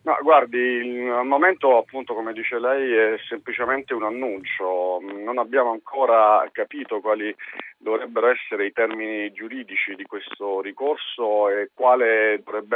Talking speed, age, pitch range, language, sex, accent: 130 wpm, 40-59, 100-125 Hz, Italian, male, native